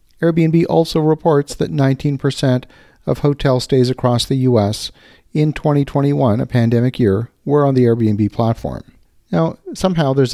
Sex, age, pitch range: male, 50-69, 115-140 Hz